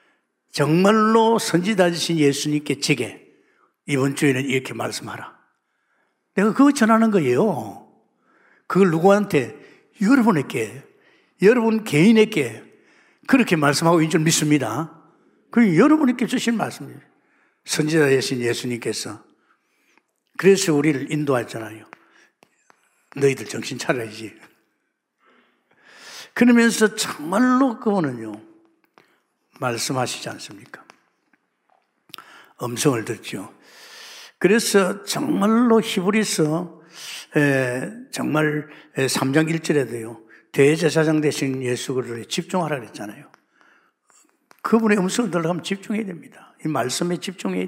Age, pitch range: 60-79, 135-220 Hz